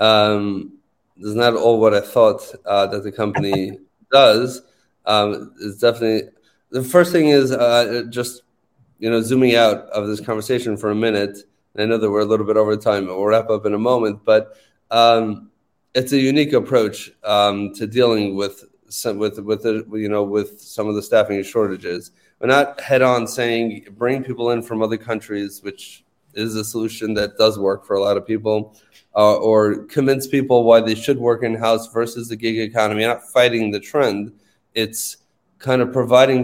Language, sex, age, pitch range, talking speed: English, male, 30-49, 105-120 Hz, 190 wpm